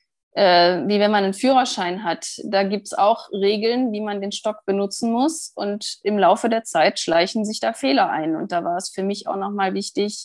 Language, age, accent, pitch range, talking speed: German, 20-39, German, 180-210 Hz, 225 wpm